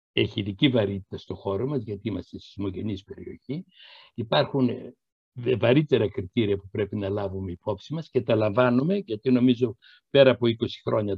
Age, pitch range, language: 60-79, 105-135 Hz, Greek